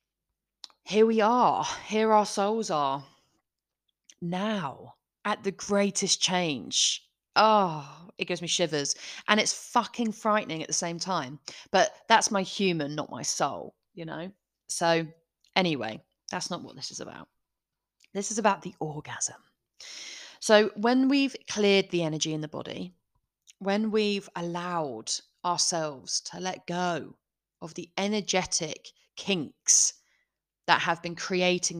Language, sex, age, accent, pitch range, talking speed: English, female, 30-49, British, 165-205 Hz, 135 wpm